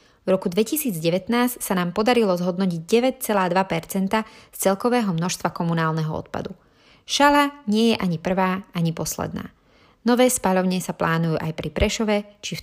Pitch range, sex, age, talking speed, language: 165-205 Hz, female, 30-49, 140 wpm, Slovak